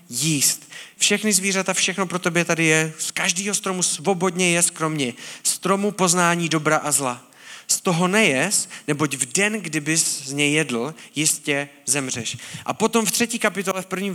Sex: male